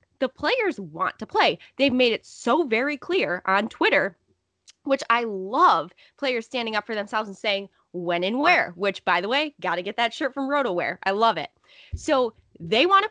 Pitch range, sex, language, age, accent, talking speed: 195-285 Hz, female, English, 10-29, American, 200 wpm